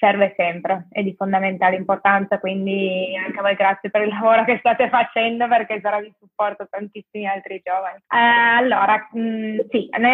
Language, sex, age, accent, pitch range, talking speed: Italian, female, 20-39, native, 205-230 Hz, 170 wpm